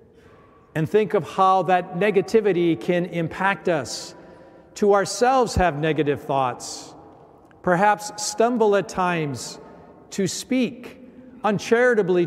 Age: 50-69